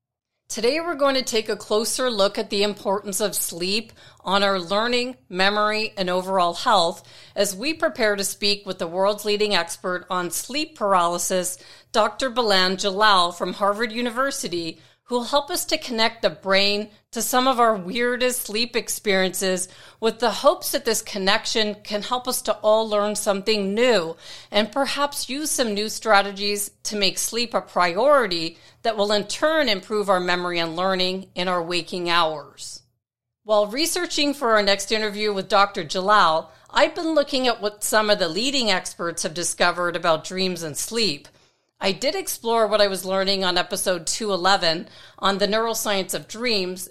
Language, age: English, 40-59